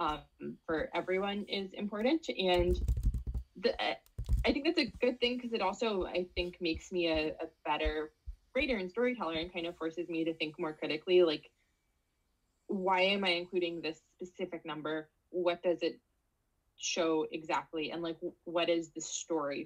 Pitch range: 160-195 Hz